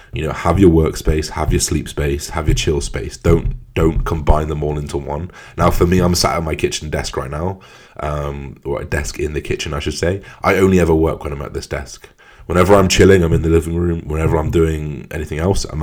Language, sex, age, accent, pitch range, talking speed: English, male, 20-39, British, 75-95 Hz, 245 wpm